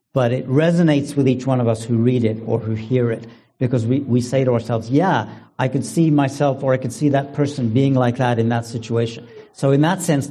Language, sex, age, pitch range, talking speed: English, male, 50-69, 120-150 Hz, 245 wpm